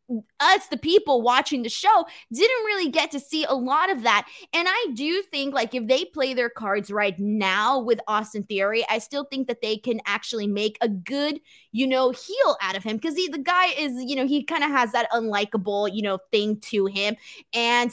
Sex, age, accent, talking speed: female, 20-39, American, 220 wpm